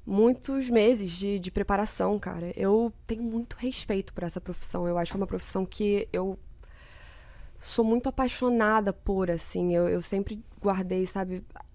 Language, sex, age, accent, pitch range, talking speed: Portuguese, female, 20-39, Brazilian, 185-215 Hz, 160 wpm